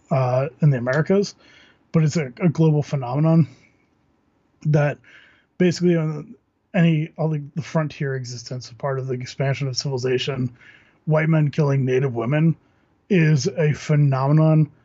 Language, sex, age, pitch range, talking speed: English, male, 20-39, 130-155 Hz, 135 wpm